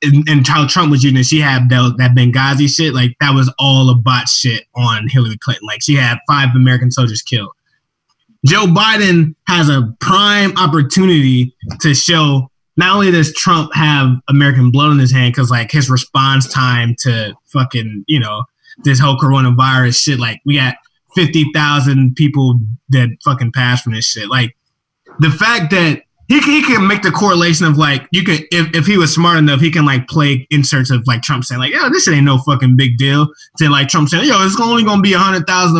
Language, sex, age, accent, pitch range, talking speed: English, male, 20-39, American, 130-165 Hz, 200 wpm